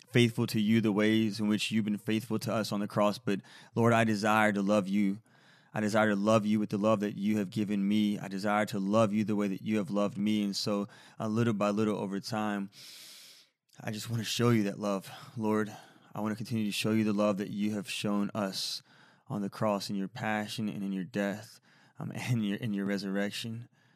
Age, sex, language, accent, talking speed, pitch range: 20-39, male, English, American, 235 wpm, 100-110 Hz